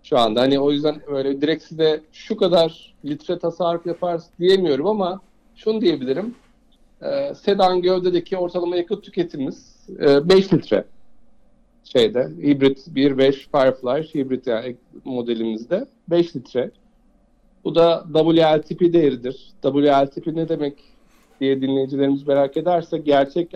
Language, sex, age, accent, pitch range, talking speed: Turkish, male, 50-69, native, 130-175 Hz, 120 wpm